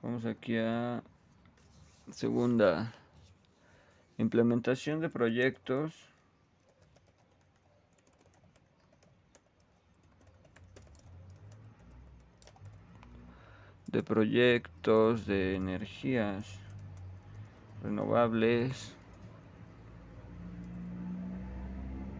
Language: Spanish